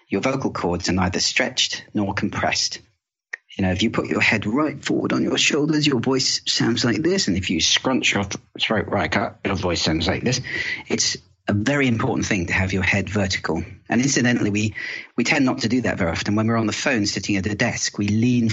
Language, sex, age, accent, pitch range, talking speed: English, male, 40-59, British, 100-120 Hz, 230 wpm